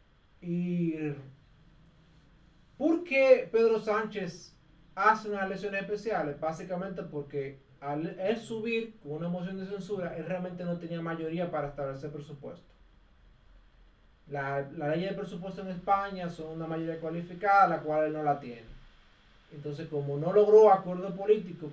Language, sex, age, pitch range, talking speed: Spanish, male, 30-49, 150-200 Hz, 140 wpm